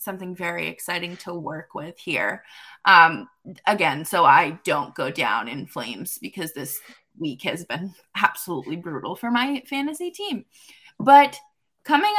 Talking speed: 145 wpm